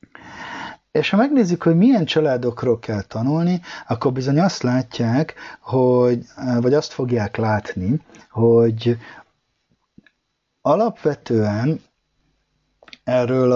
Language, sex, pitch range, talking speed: Hungarian, male, 95-130 Hz, 90 wpm